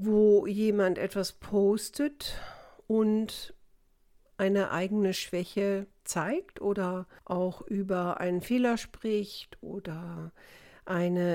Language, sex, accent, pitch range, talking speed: German, female, German, 180-215 Hz, 90 wpm